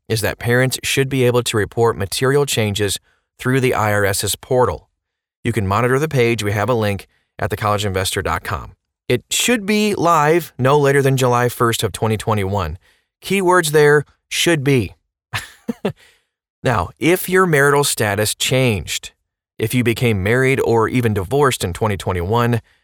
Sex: male